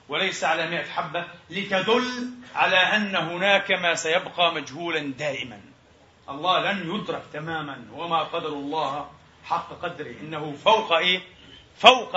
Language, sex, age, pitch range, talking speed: Arabic, male, 40-59, 150-195 Hz, 125 wpm